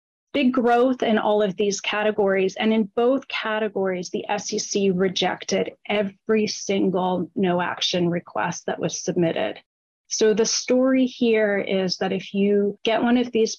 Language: English